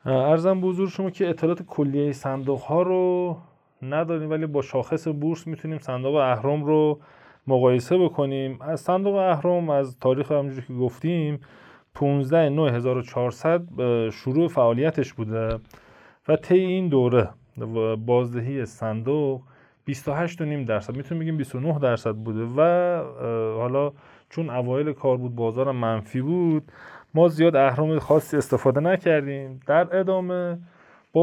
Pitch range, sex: 125-160 Hz, male